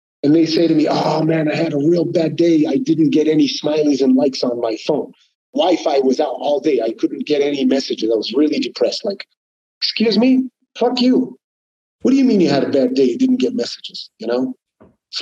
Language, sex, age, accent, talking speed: English, male, 50-69, American, 230 wpm